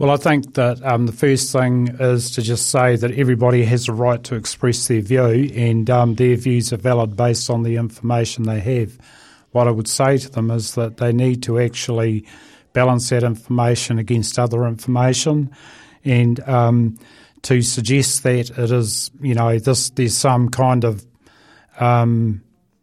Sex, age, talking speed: male, 40-59, 175 wpm